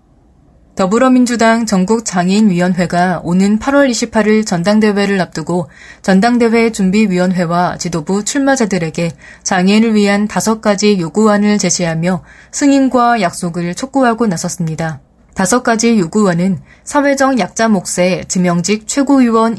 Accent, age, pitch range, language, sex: native, 20-39, 180-225 Hz, Korean, female